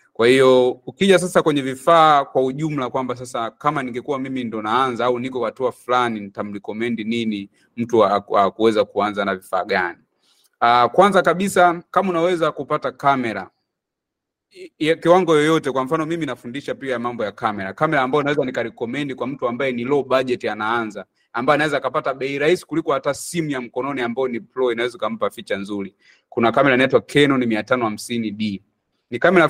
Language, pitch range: Swahili, 115-155 Hz